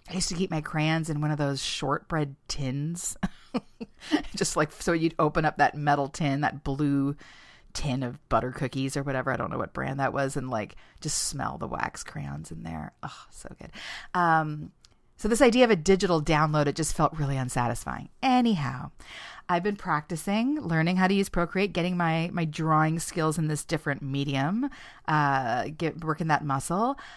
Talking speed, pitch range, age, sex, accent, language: 185 wpm, 140-195 Hz, 30-49, female, American, English